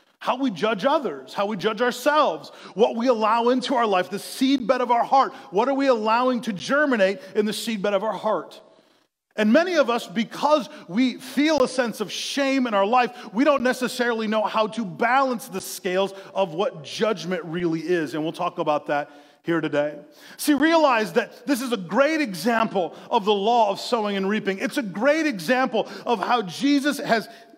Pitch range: 200-260 Hz